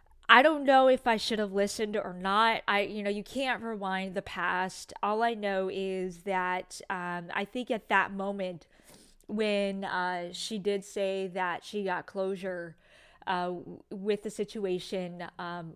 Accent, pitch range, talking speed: American, 185-220 Hz, 165 wpm